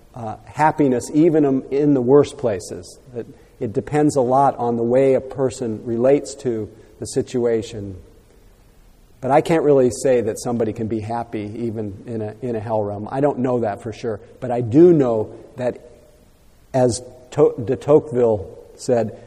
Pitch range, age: 115-140 Hz, 40-59